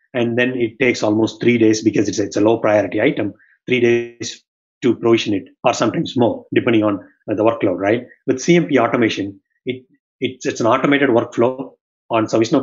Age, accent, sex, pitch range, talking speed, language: 30-49, Indian, male, 110-130 Hz, 190 wpm, English